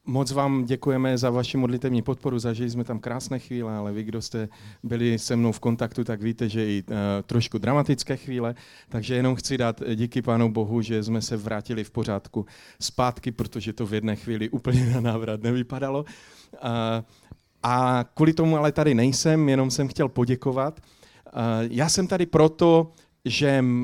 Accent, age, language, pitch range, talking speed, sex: native, 40-59, Czech, 115-135 Hz, 165 wpm, male